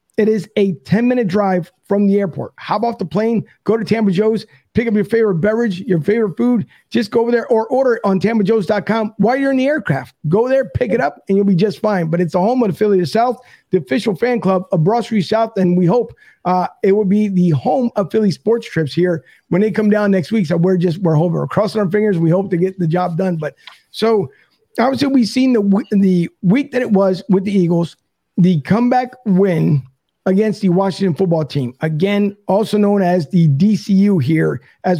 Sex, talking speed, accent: male, 225 wpm, American